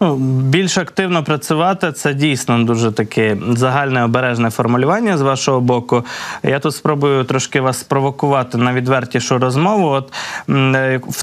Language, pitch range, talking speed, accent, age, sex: Ukrainian, 120-150 Hz, 135 wpm, native, 20-39, male